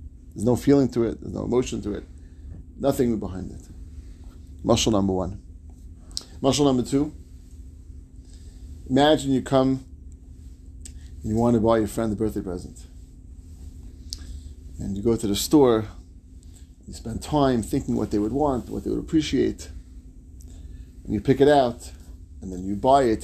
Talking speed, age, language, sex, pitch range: 155 wpm, 40-59, English, male, 80-115 Hz